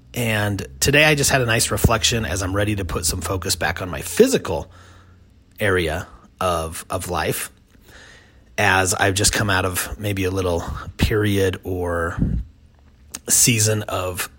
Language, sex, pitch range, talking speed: English, male, 95-115 Hz, 150 wpm